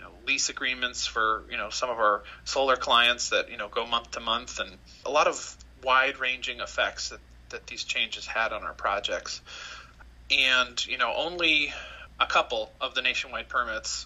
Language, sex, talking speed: English, male, 180 wpm